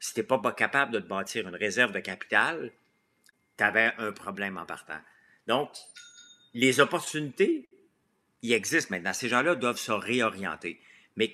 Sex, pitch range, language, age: male, 105-140 Hz, French, 50-69